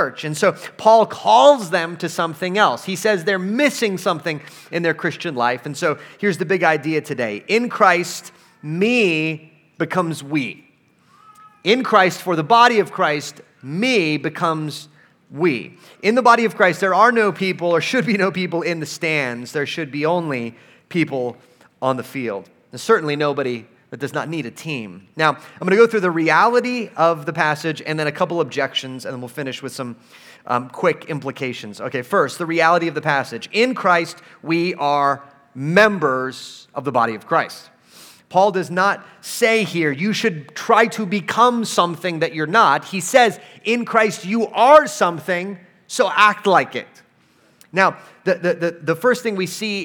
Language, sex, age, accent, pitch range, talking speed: English, male, 30-49, American, 150-200 Hz, 180 wpm